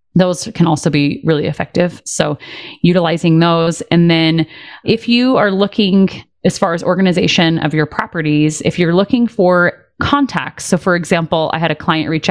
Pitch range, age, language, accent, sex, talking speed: 160-205 Hz, 30-49, English, American, female, 170 wpm